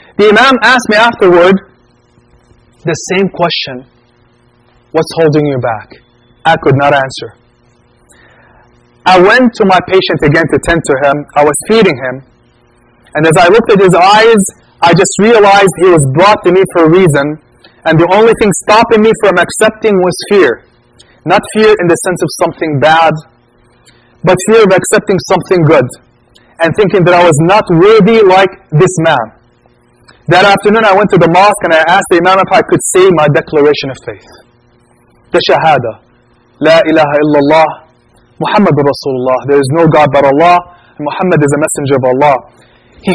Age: 30-49